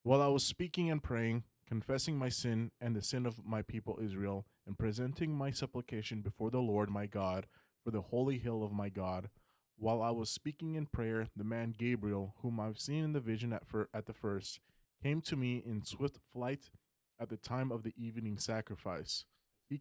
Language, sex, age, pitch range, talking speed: English, male, 20-39, 105-125 Hz, 195 wpm